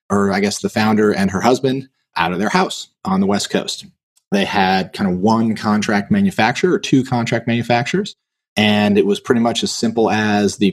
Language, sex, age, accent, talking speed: English, male, 30-49, American, 200 wpm